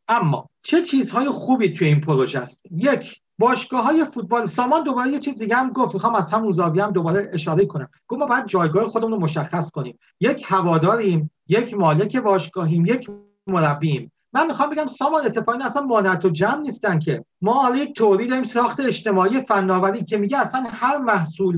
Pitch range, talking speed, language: 180-225 Hz, 185 wpm, Persian